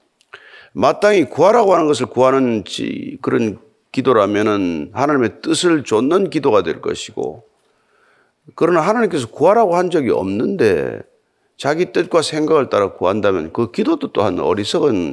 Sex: male